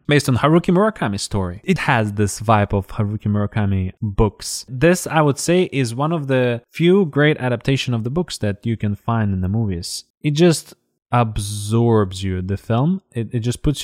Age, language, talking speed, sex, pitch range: 20-39, English, 190 wpm, male, 105-145 Hz